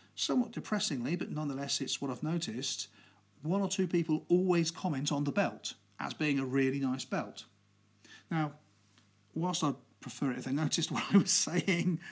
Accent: British